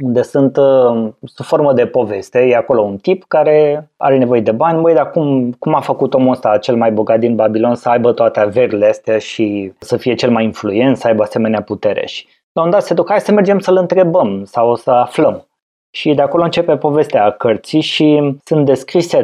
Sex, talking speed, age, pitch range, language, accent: male, 205 wpm, 20-39, 115-140 Hz, Romanian, native